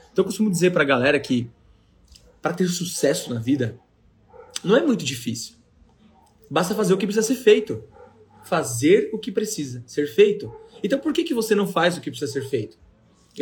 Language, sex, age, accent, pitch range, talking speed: Portuguese, male, 20-39, Brazilian, 140-205 Hz, 190 wpm